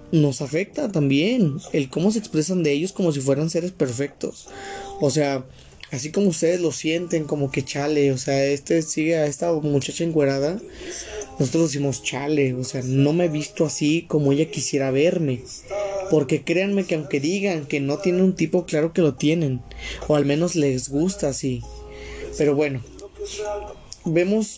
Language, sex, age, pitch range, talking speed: Spanish, male, 20-39, 140-175 Hz, 170 wpm